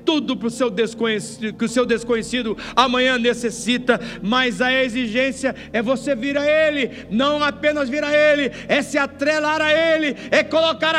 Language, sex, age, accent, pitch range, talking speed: Portuguese, male, 60-79, Brazilian, 240-305 Hz, 145 wpm